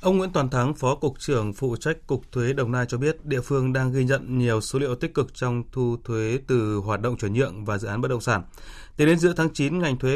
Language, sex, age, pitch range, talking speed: Vietnamese, male, 20-39, 120-140 Hz, 270 wpm